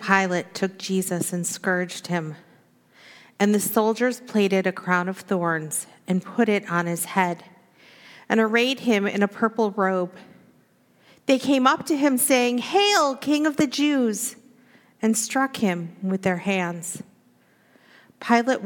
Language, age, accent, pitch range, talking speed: English, 50-69, American, 185-245 Hz, 145 wpm